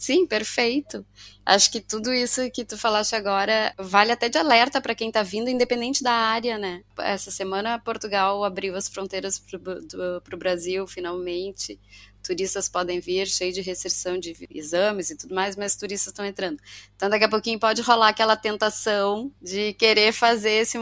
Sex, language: female, Portuguese